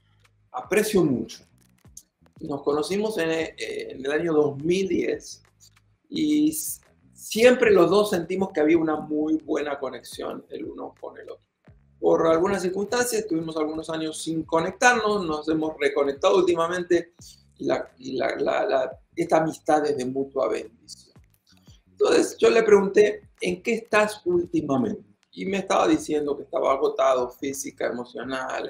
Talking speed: 140 wpm